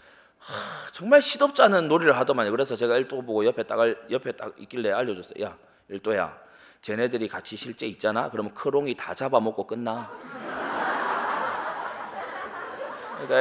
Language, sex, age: Korean, male, 30-49